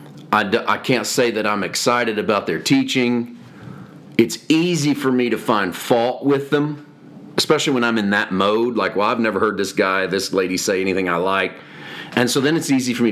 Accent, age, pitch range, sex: American, 40-59, 110-140 Hz, male